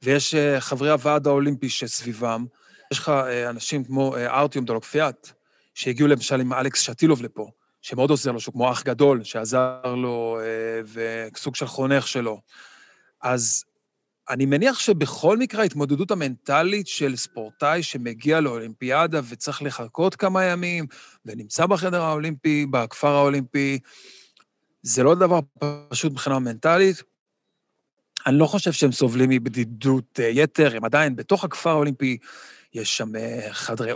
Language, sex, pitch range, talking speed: Hebrew, male, 125-150 Hz, 125 wpm